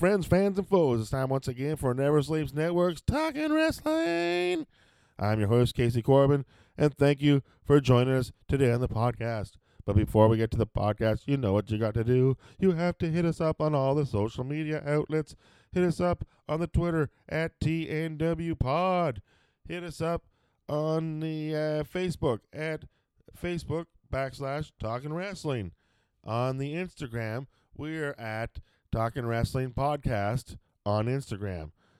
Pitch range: 110-155 Hz